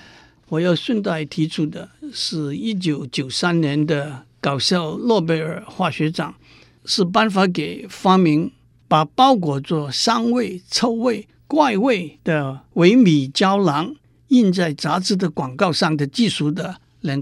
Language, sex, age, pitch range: Chinese, male, 60-79, 150-205 Hz